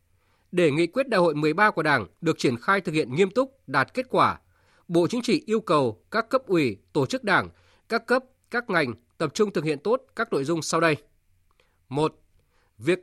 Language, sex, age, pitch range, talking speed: Vietnamese, male, 20-39, 145-205 Hz, 205 wpm